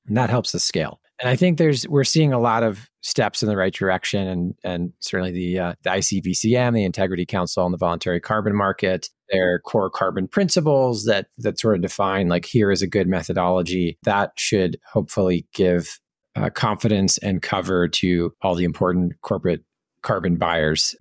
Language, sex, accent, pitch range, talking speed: English, male, American, 95-125 Hz, 185 wpm